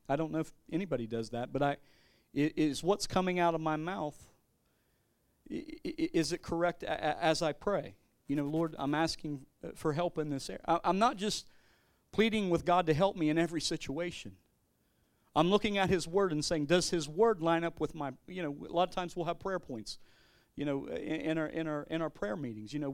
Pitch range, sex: 150-195 Hz, male